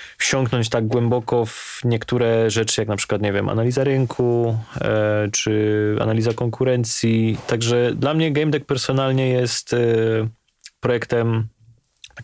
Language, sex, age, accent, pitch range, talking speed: Polish, male, 20-39, native, 115-140 Hz, 120 wpm